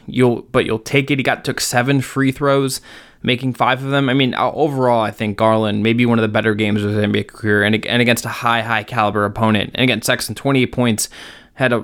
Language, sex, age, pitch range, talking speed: English, male, 20-39, 110-130 Hz, 230 wpm